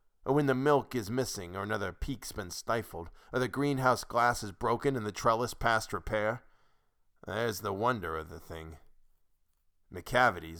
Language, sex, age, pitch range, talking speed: English, male, 40-59, 90-130 Hz, 165 wpm